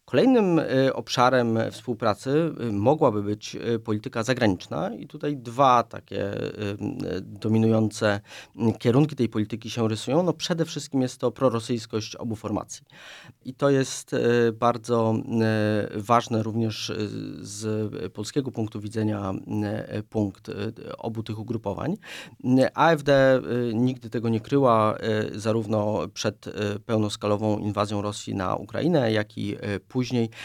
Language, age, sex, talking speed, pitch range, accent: Polish, 30-49, male, 105 wpm, 105-125 Hz, native